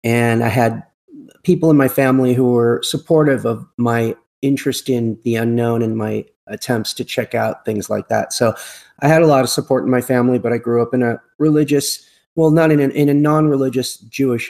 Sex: male